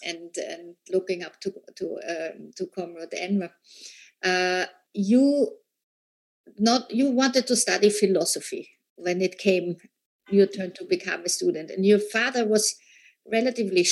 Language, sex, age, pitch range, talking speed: German, female, 50-69, 195-225 Hz, 140 wpm